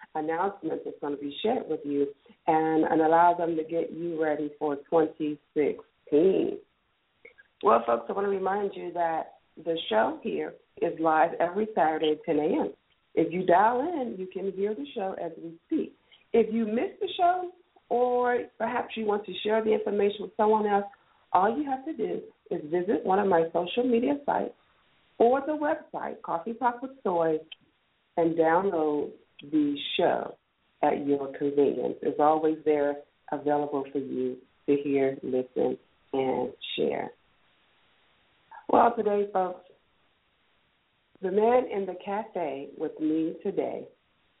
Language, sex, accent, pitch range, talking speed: English, female, American, 155-230 Hz, 155 wpm